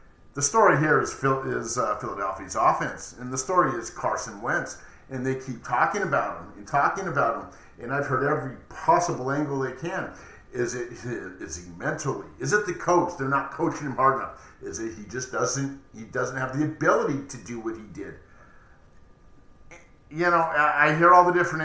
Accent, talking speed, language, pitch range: American, 190 wpm, English, 125-160 Hz